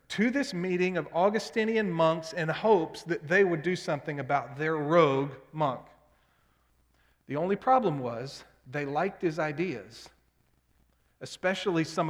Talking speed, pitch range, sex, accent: 135 wpm, 135-185 Hz, male, American